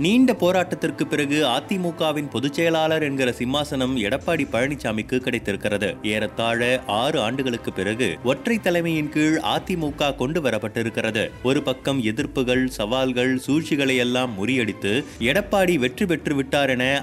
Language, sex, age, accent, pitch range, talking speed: Tamil, male, 30-49, native, 130-165 Hz, 95 wpm